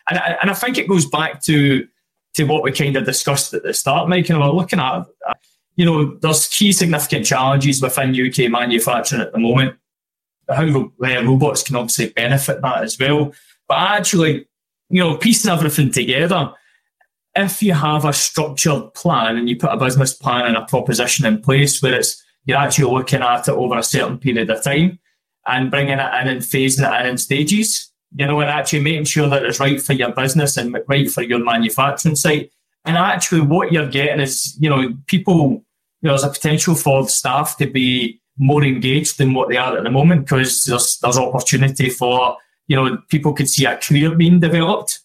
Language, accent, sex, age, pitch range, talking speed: English, British, male, 20-39, 130-155 Hz, 200 wpm